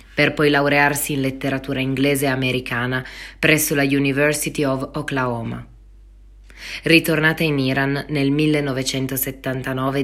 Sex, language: female, Italian